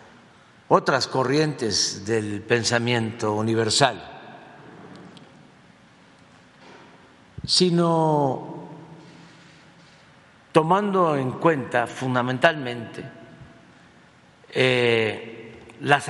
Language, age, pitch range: Spanish, 50-69, 110-150 Hz